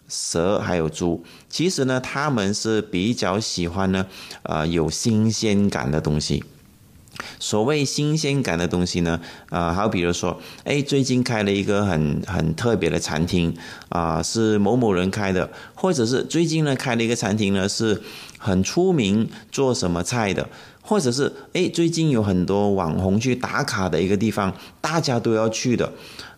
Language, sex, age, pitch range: Chinese, male, 30-49, 90-125 Hz